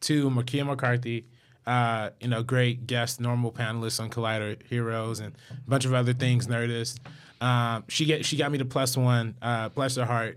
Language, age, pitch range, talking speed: English, 20-39, 115-130 Hz, 190 wpm